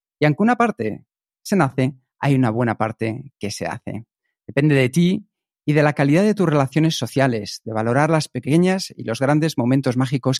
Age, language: 40-59, Spanish